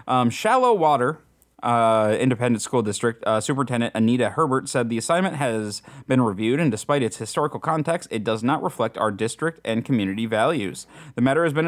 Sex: male